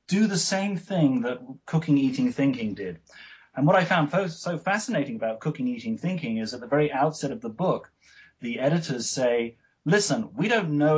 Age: 30-49